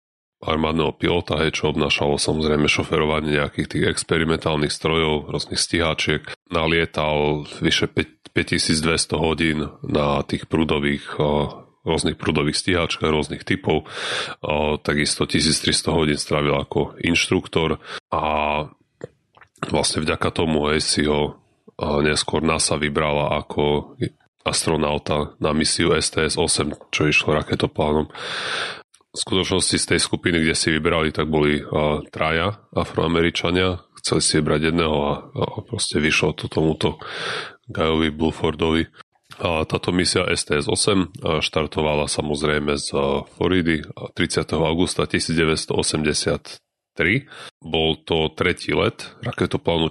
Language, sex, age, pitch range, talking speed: Slovak, male, 30-49, 75-80 Hz, 110 wpm